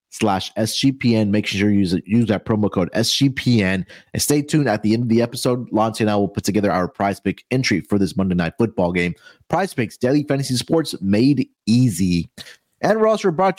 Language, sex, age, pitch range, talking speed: English, male, 30-49, 105-135 Hz, 205 wpm